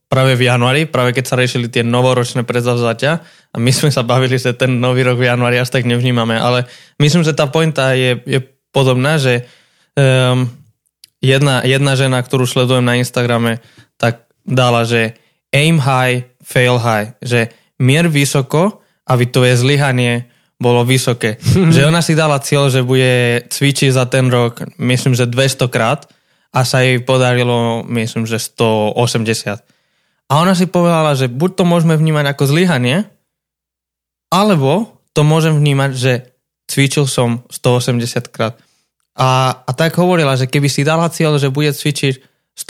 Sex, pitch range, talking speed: male, 125-155 Hz, 155 wpm